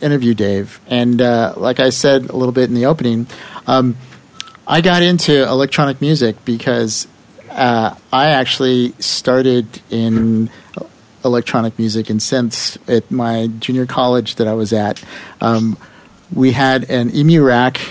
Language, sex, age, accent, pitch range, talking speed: English, male, 50-69, American, 120-145 Hz, 145 wpm